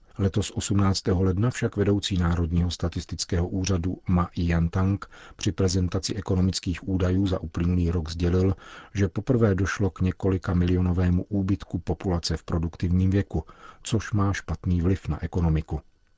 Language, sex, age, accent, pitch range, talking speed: Czech, male, 40-59, native, 85-100 Hz, 130 wpm